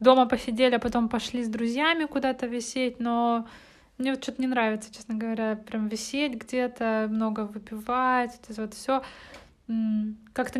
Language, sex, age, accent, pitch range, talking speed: Russian, female, 20-39, native, 220-255 Hz, 145 wpm